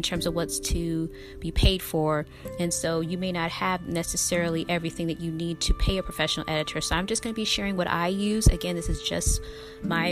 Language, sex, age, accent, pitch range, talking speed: English, female, 20-39, American, 170-250 Hz, 225 wpm